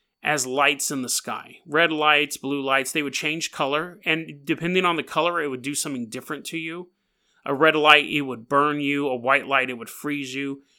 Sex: male